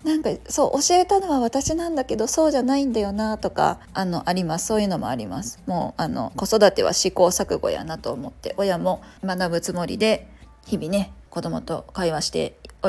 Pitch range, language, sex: 180-260 Hz, Japanese, female